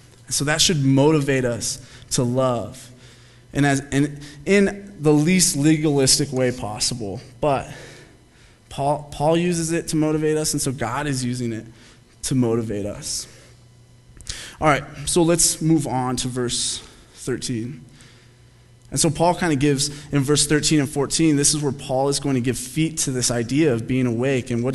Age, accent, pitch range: 20-39, American, 125-165 Hz